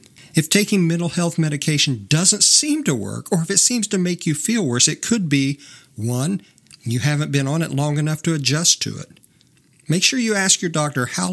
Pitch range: 130-165 Hz